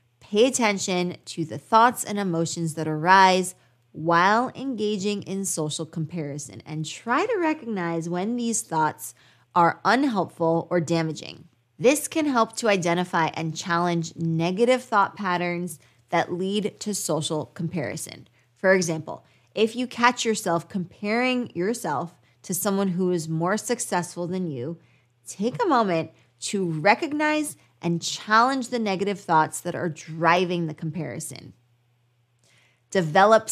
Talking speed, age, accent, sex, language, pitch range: 130 wpm, 20-39, American, female, English, 155-205 Hz